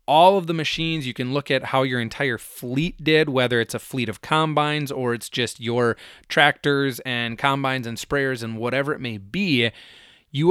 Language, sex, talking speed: English, male, 195 wpm